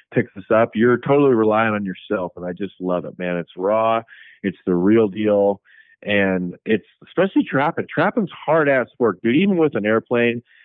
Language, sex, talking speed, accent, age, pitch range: English, male, 185 wpm, American, 30-49, 105-135 Hz